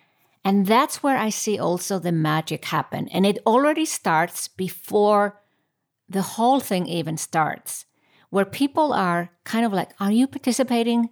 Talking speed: 150 wpm